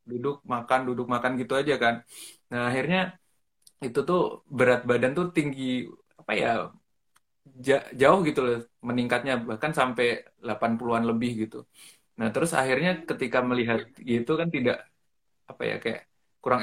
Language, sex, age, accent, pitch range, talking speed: Indonesian, male, 20-39, native, 115-140 Hz, 135 wpm